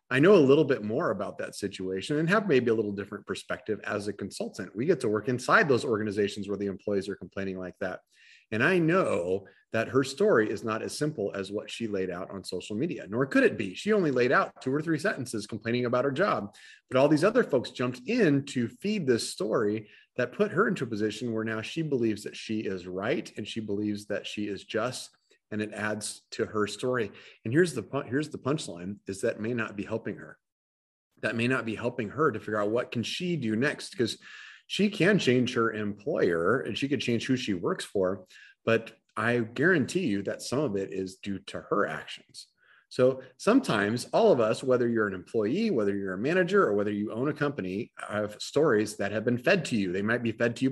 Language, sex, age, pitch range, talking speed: English, male, 30-49, 105-130 Hz, 225 wpm